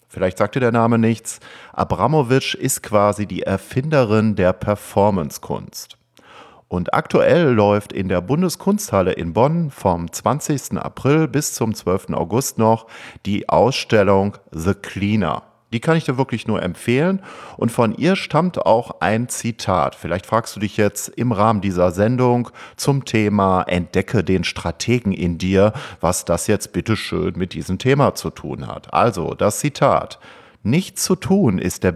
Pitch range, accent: 95-130 Hz, German